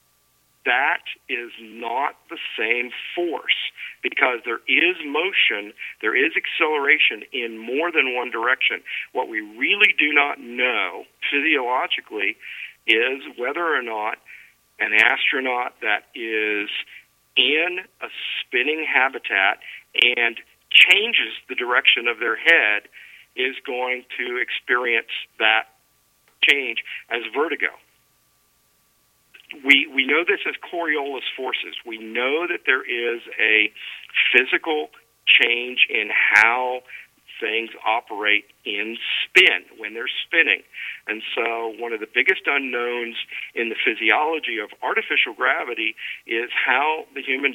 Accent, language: American, English